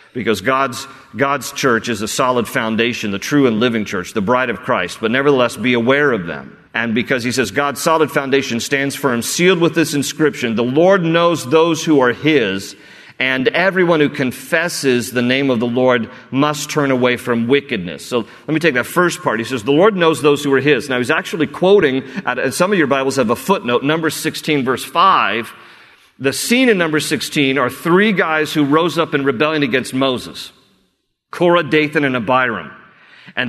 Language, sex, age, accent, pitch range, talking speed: English, male, 40-59, American, 125-155 Hz, 195 wpm